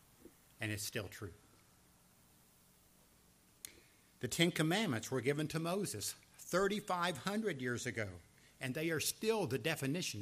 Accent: American